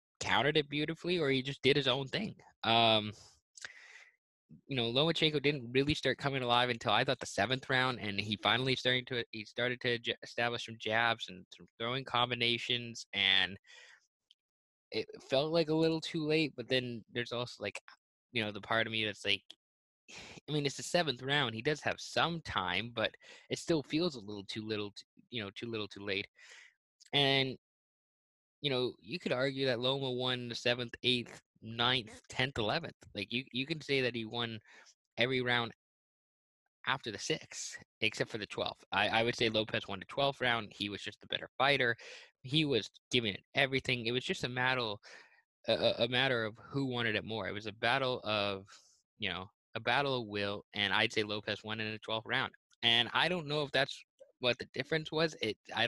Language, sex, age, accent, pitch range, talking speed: English, male, 20-39, American, 110-135 Hz, 200 wpm